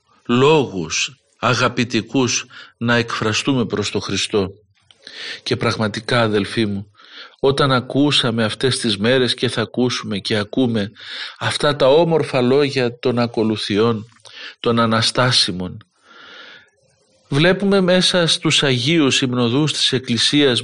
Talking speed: 105 wpm